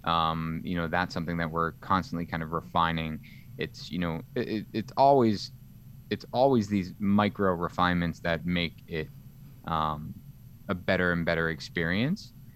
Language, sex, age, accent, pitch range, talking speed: English, male, 20-39, American, 85-110 Hz, 145 wpm